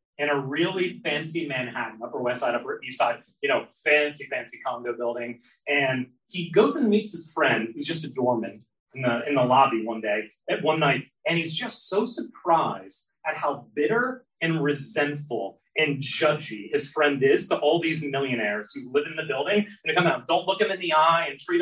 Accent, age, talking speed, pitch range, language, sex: American, 30-49, 205 wpm, 150-220 Hz, English, male